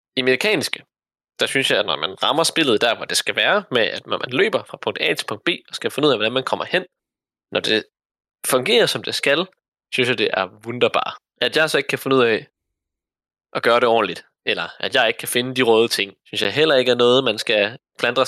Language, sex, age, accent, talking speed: Danish, male, 20-39, native, 250 wpm